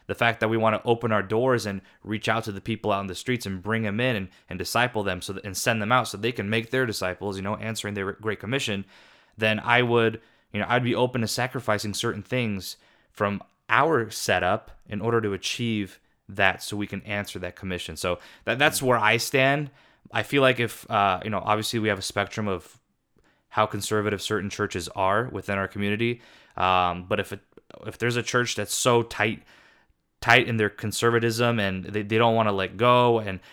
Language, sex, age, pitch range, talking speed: English, male, 20-39, 100-115 Hz, 220 wpm